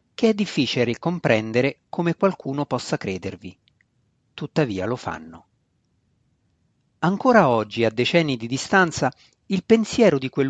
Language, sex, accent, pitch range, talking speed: Italian, male, native, 120-170 Hz, 115 wpm